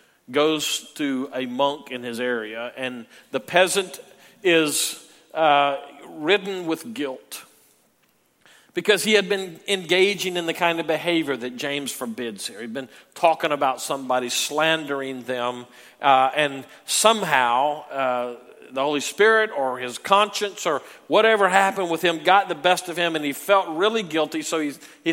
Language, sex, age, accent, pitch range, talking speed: English, male, 50-69, American, 150-195 Hz, 155 wpm